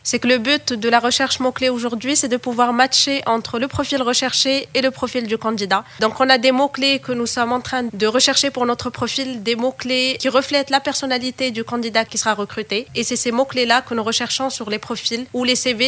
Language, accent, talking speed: French, French, 235 wpm